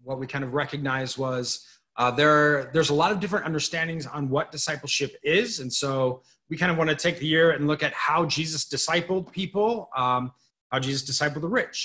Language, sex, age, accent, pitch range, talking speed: English, male, 30-49, American, 130-170 Hz, 210 wpm